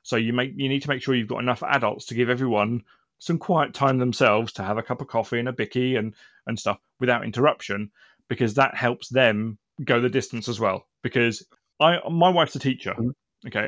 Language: English